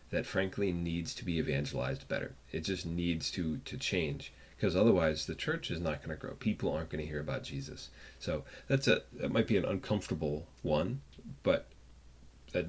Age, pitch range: 30-49, 75-95 Hz